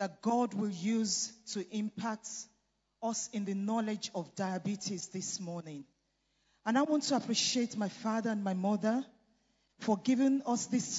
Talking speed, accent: 155 wpm, Nigerian